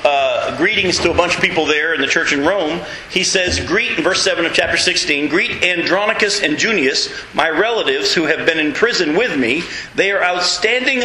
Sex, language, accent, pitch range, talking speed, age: male, English, American, 170-225 Hz, 205 wpm, 40-59